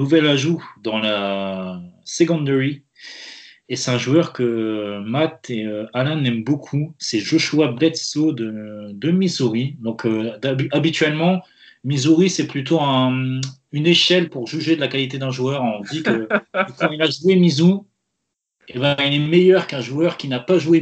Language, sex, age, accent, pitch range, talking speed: French, male, 30-49, French, 120-160 Hz, 160 wpm